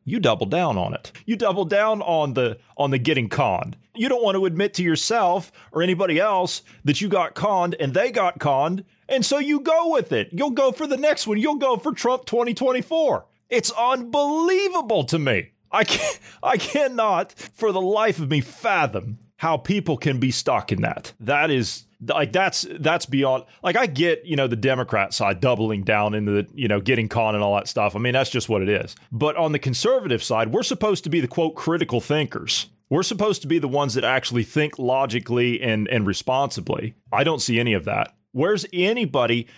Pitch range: 125-210 Hz